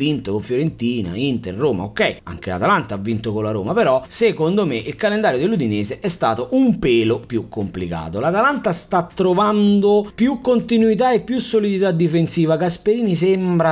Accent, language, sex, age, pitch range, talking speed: native, Italian, male, 30-49, 110-185 Hz, 155 wpm